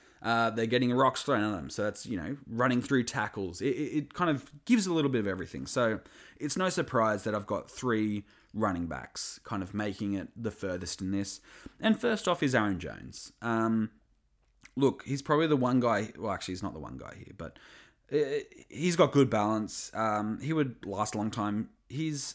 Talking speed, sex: 205 wpm, male